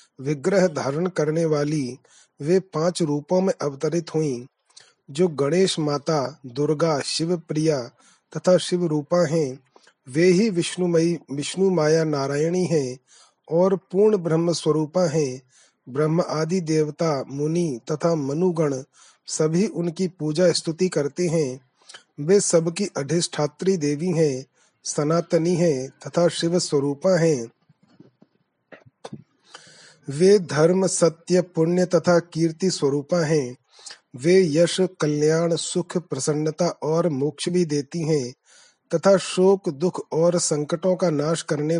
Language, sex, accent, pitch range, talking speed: Hindi, male, native, 150-180 Hz, 115 wpm